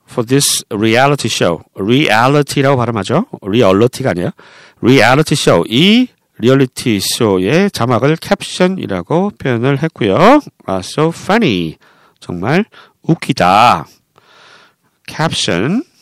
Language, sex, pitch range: Korean, male, 120-185 Hz